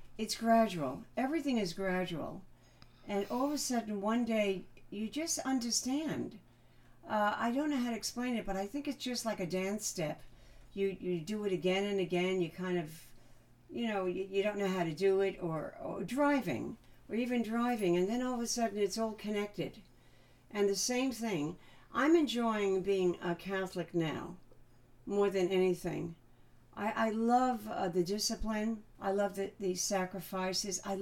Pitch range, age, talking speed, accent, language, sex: 180-220 Hz, 60-79, 175 wpm, American, English, female